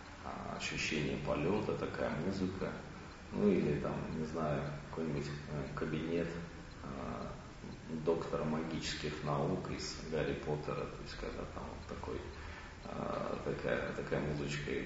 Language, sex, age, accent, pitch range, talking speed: Russian, male, 40-59, native, 75-85 Hz, 110 wpm